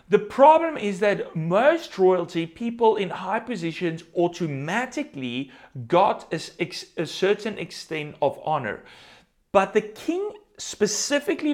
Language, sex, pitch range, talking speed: English, male, 155-215 Hz, 110 wpm